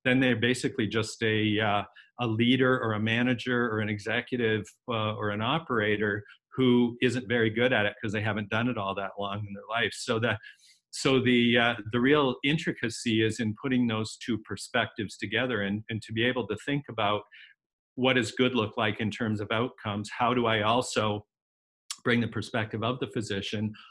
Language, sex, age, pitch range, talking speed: English, male, 50-69, 110-125 Hz, 195 wpm